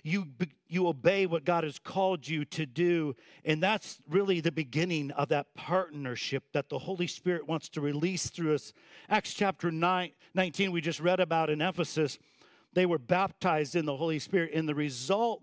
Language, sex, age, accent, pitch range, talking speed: English, male, 50-69, American, 150-185 Hz, 185 wpm